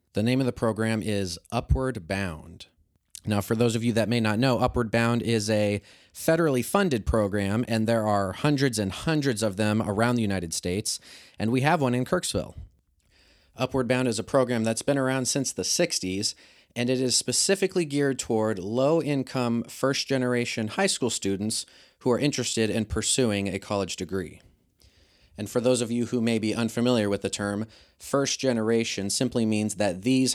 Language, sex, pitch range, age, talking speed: English, male, 95-120 Hz, 30-49, 180 wpm